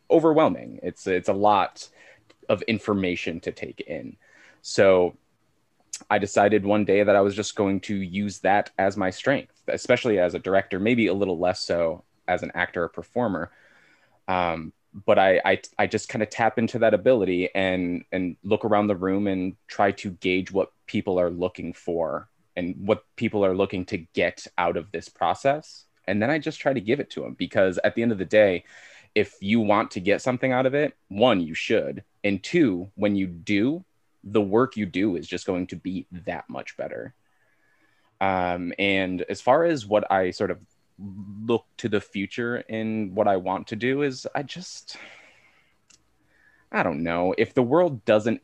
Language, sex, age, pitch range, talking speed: English, male, 20-39, 95-110 Hz, 190 wpm